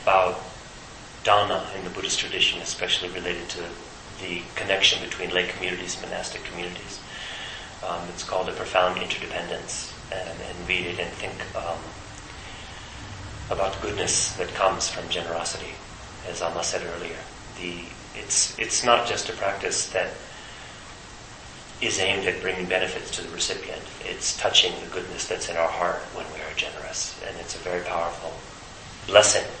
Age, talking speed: 30-49, 150 wpm